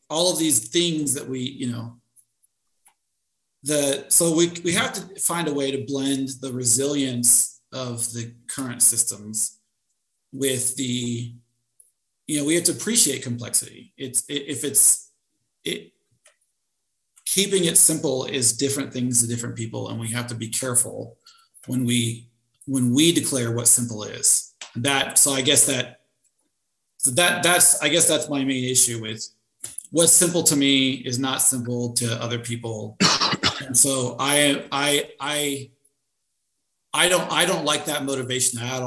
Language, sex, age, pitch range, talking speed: English, male, 40-59, 120-145 Hz, 155 wpm